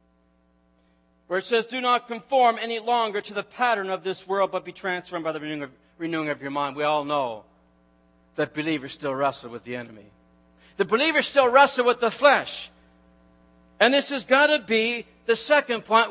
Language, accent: English, American